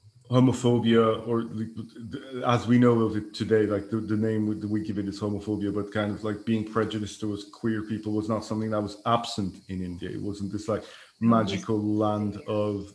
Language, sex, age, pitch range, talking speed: English, male, 30-49, 105-115 Hz, 190 wpm